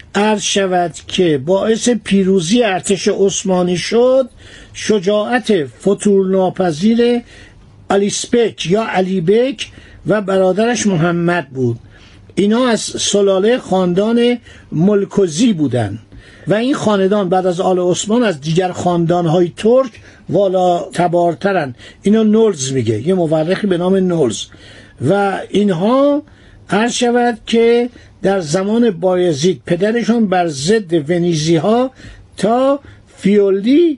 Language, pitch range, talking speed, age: Persian, 175-225 Hz, 110 wpm, 50-69